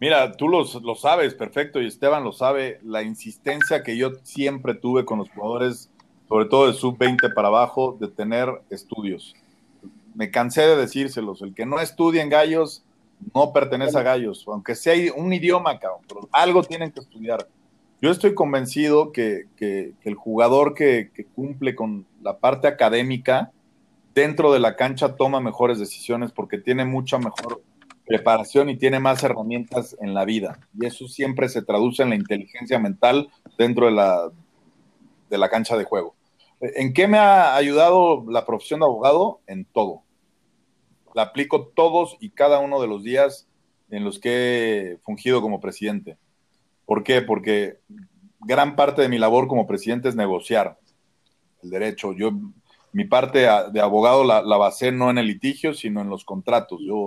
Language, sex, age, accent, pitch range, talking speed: Spanish, male, 40-59, Mexican, 110-145 Hz, 165 wpm